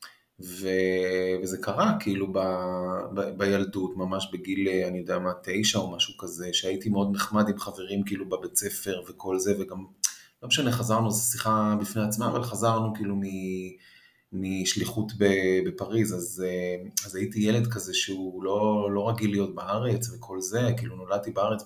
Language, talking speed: Hebrew, 155 wpm